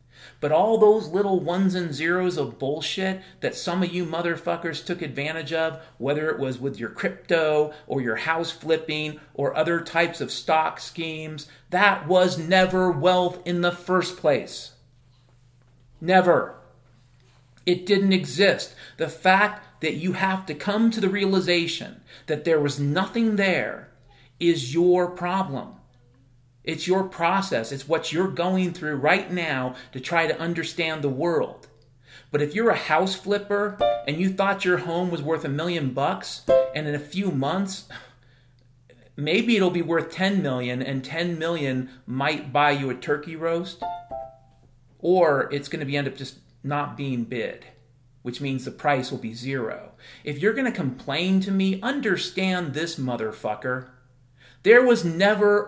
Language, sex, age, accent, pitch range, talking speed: English, male, 40-59, American, 135-185 Hz, 155 wpm